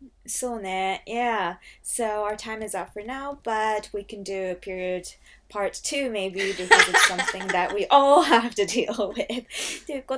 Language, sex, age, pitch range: Japanese, female, 20-39, 170-220 Hz